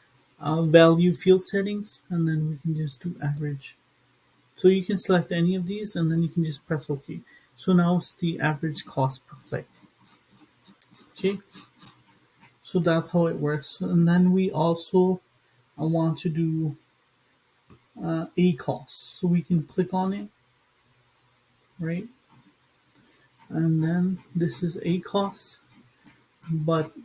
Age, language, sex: 30-49, English, male